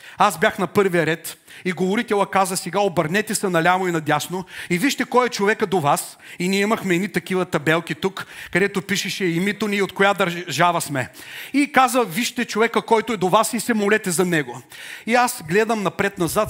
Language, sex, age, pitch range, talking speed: Bulgarian, male, 40-59, 170-215 Hz, 200 wpm